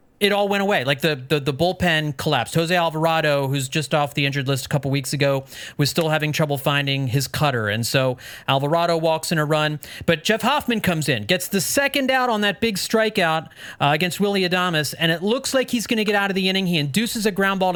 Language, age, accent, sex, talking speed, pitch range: English, 30-49, American, male, 235 wpm, 150-195 Hz